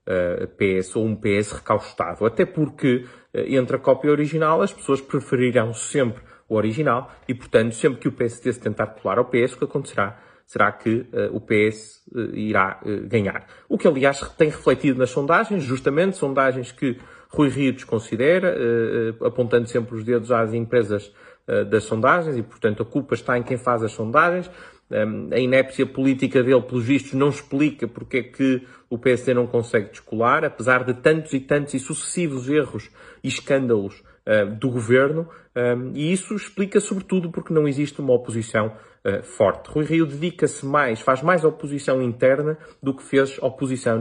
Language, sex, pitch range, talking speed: Portuguese, male, 115-145 Hz, 165 wpm